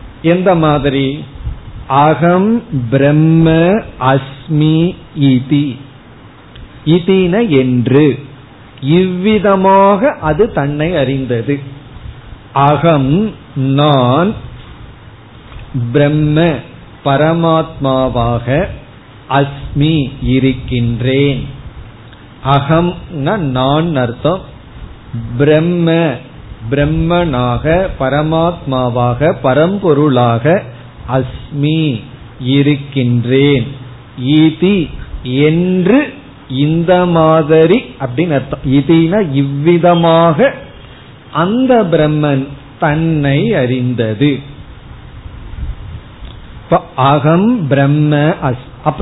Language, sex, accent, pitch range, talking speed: Tamil, male, native, 130-165 Hz, 40 wpm